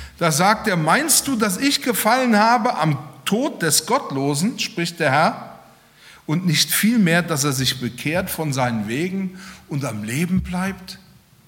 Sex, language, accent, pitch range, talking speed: male, German, German, 150-215 Hz, 155 wpm